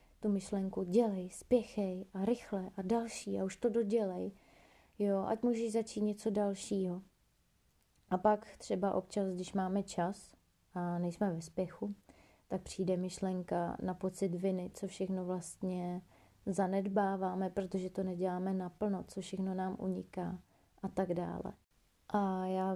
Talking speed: 135 wpm